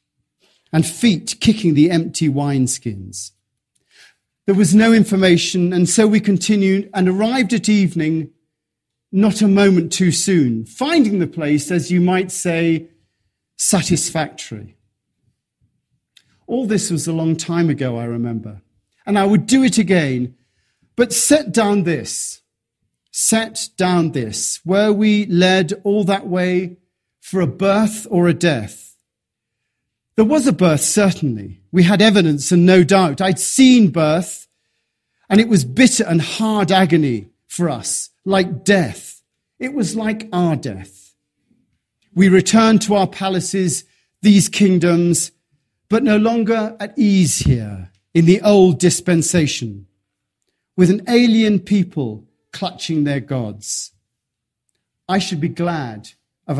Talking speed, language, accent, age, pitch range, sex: 130 wpm, English, British, 40-59, 140-200 Hz, male